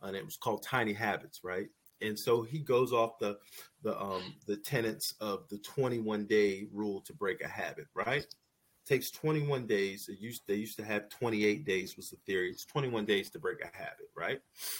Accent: American